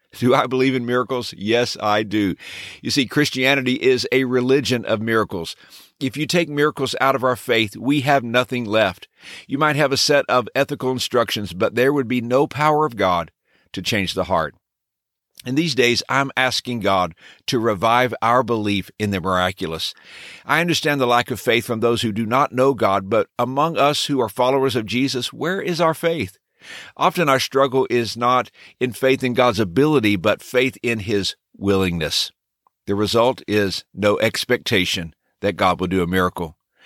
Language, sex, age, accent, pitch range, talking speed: English, male, 50-69, American, 105-130 Hz, 180 wpm